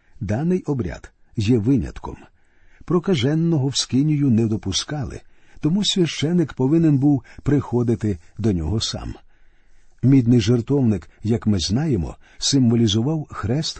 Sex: male